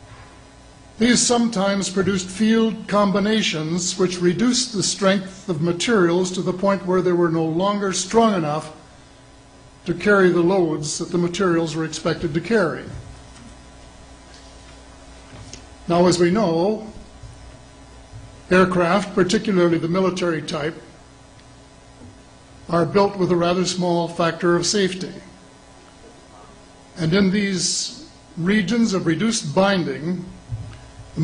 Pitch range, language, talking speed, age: 165-200 Hz, Russian, 110 wpm, 60-79